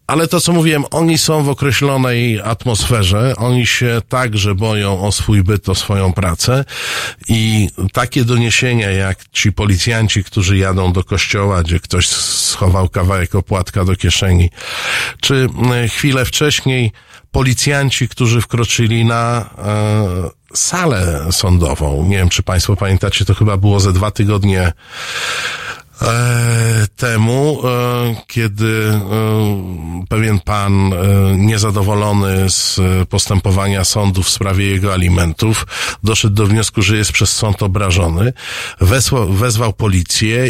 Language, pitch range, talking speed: Polish, 95-115 Hz, 115 wpm